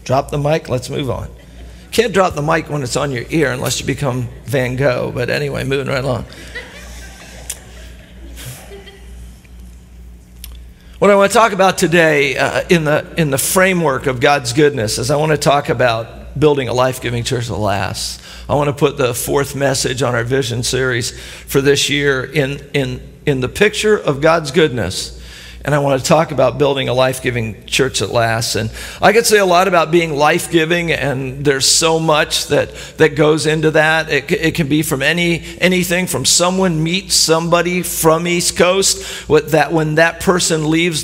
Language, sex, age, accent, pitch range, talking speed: English, male, 50-69, American, 125-165 Hz, 185 wpm